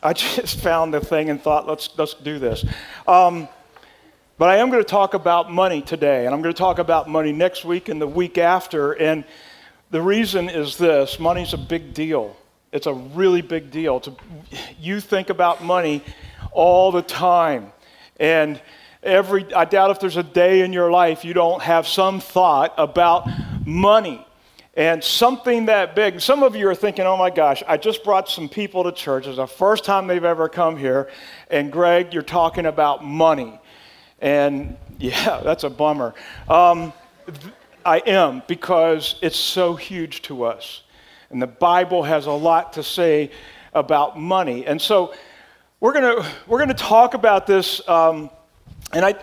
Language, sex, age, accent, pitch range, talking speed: English, male, 50-69, American, 155-190 Hz, 175 wpm